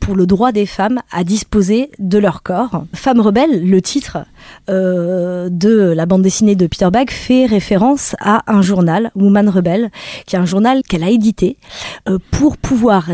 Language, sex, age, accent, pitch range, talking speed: French, female, 20-39, French, 185-240 Hz, 195 wpm